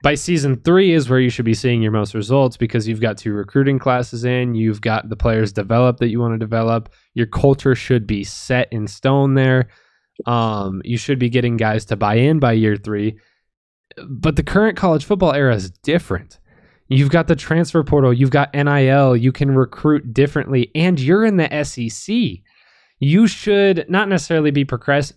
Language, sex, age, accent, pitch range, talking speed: English, male, 20-39, American, 120-155 Hz, 190 wpm